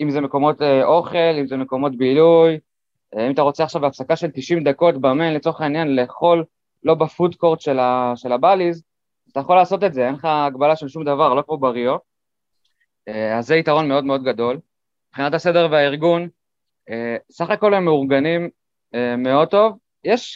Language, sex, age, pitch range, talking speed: Hebrew, male, 20-39, 130-170 Hz, 160 wpm